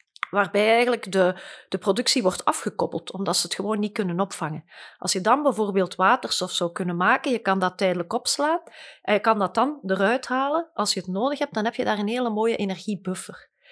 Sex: female